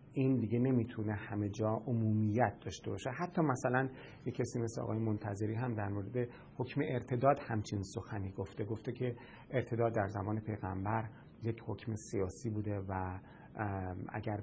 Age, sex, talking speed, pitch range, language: 40-59, male, 145 wpm, 110-125 Hz, English